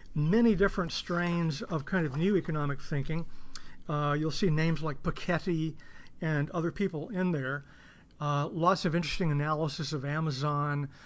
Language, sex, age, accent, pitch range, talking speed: English, male, 40-59, American, 150-190 Hz, 145 wpm